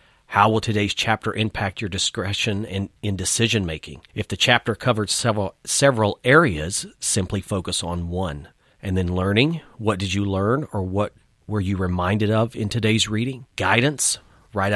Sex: male